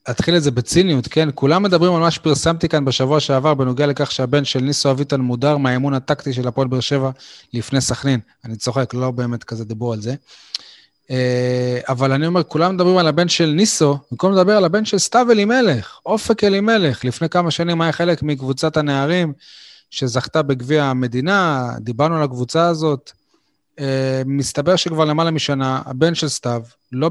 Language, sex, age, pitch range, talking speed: Hebrew, male, 30-49, 125-160 Hz, 170 wpm